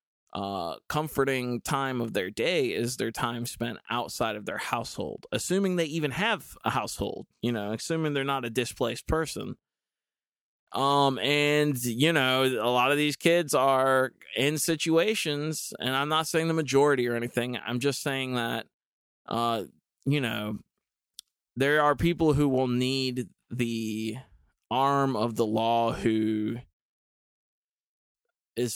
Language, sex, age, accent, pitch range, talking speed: English, male, 20-39, American, 115-145 Hz, 140 wpm